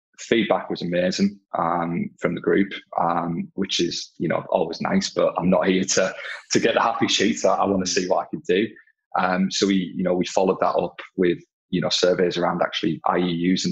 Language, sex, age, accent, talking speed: English, male, 20-39, British, 220 wpm